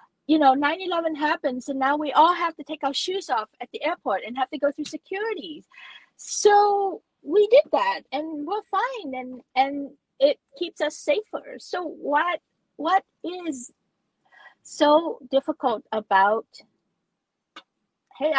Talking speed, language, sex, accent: 145 wpm, English, female, American